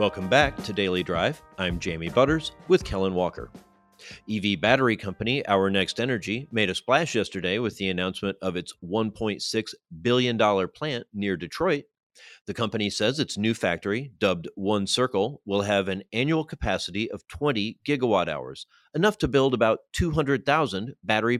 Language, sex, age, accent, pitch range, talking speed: English, male, 40-59, American, 95-115 Hz, 155 wpm